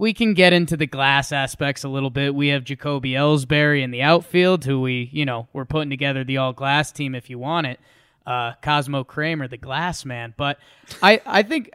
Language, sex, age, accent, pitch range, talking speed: English, male, 20-39, American, 140-190 Hz, 215 wpm